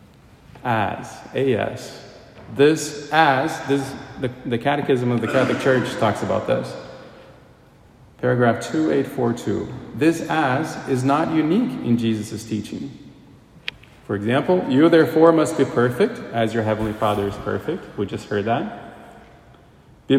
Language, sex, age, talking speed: English, male, 30-49, 130 wpm